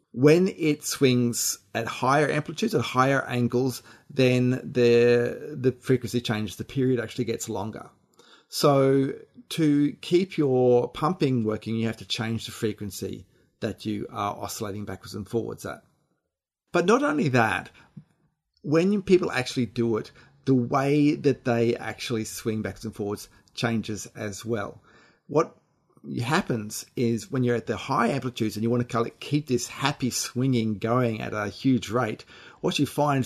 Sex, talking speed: male, 160 wpm